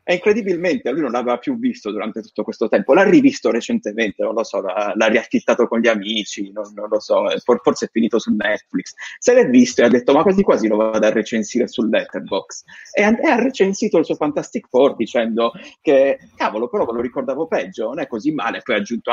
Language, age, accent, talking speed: Italian, 30-49, native, 225 wpm